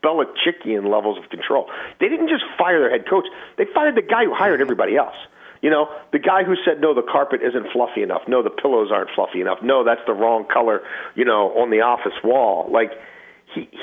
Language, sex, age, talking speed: English, male, 40-59, 215 wpm